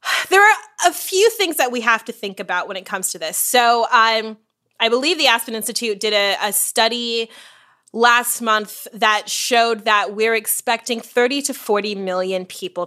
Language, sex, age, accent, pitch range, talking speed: English, female, 20-39, American, 185-235 Hz, 180 wpm